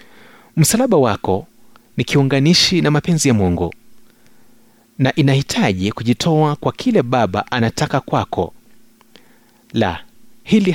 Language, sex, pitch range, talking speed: Swahili, male, 115-165 Hz, 100 wpm